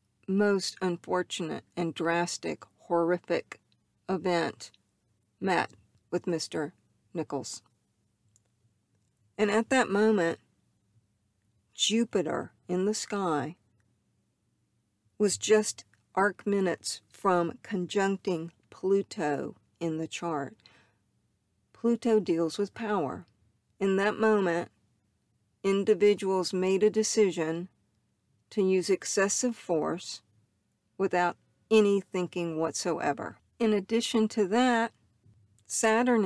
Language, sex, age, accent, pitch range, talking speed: English, female, 50-69, American, 145-215 Hz, 85 wpm